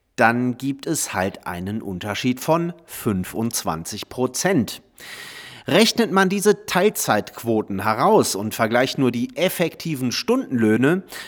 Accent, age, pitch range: German, 40-59, 110-145 Hz